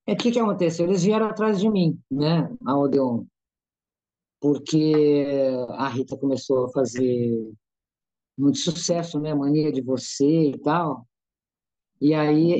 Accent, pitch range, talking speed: Brazilian, 130-170 Hz, 145 wpm